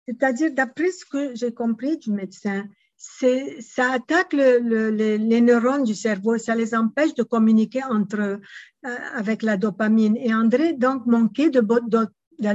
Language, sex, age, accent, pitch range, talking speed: English, female, 50-69, Swiss, 220-255 Hz, 165 wpm